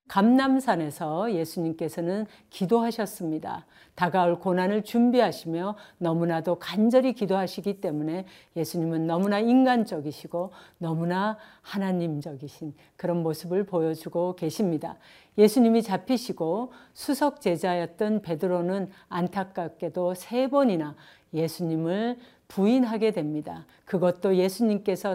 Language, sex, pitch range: Korean, female, 170-210 Hz